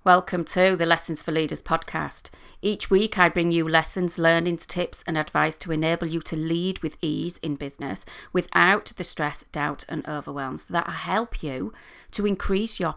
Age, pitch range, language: 40-59, 155-185 Hz, English